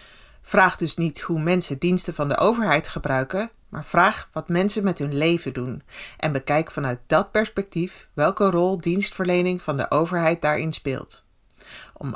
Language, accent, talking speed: Dutch, Dutch, 160 wpm